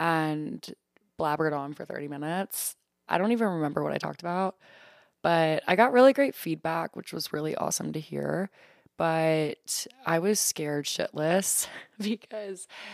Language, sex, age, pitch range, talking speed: English, female, 20-39, 150-190 Hz, 150 wpm